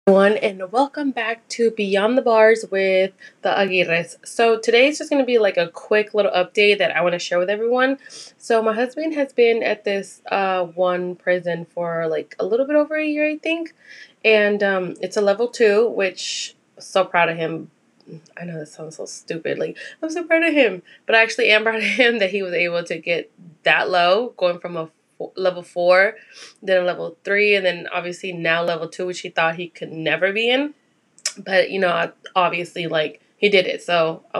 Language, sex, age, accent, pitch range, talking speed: English, female, 20-39, American, 180-230 Hz, 210 wpm